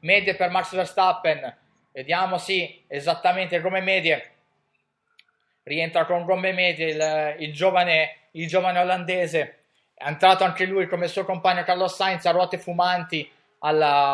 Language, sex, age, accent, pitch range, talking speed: Italian, male, 20-39, native, 165-185 Hz, 140 wpm